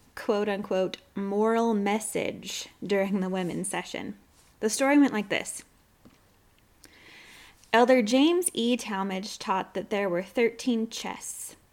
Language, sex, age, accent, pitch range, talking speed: English, female, 20-39, American, 195-245 Hz, 120 wpm